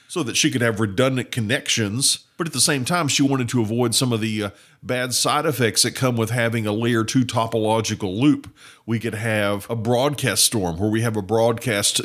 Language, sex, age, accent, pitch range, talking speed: English, male, 50-69, American, 115-150 Hz, 215 wpm